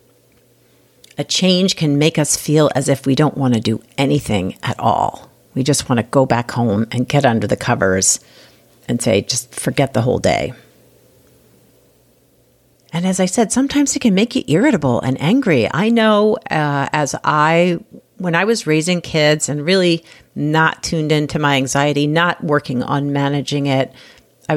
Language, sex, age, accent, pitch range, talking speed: English, female, 50-69, American, 140-175 Hz, 170 wpm